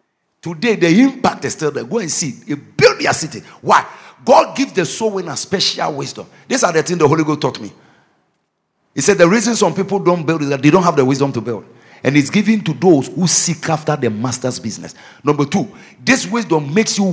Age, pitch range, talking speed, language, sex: 50-69, 150-210 Hz, 225 wpm, English, male